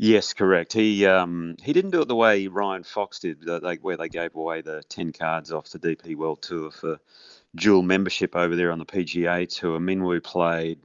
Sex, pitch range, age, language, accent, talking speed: male, 85-100 Hz, 30-49, English, Australian, 205 wpm